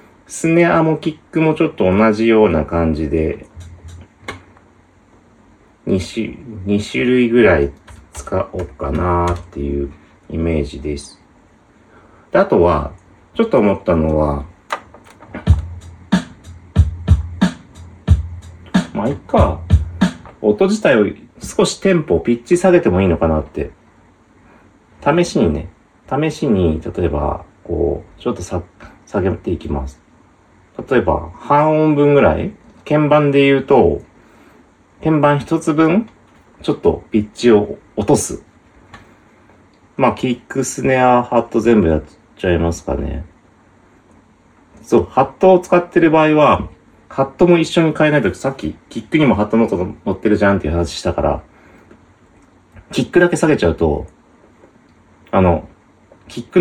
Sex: male